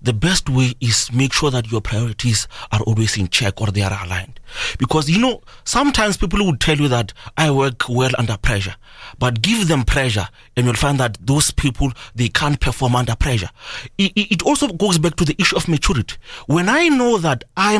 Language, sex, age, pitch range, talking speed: English, male, 30-49, 135-195 Hz, 200 wpm